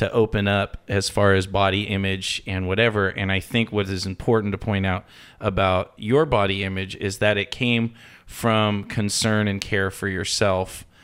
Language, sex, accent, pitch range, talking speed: English, male, American, 100-115 Hz, 180 wpm